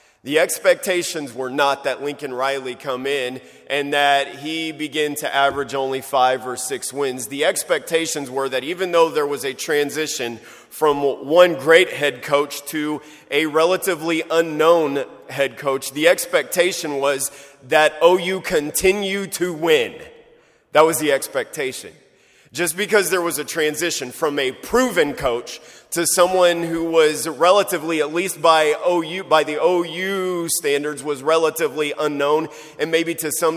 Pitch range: 140-180 Hz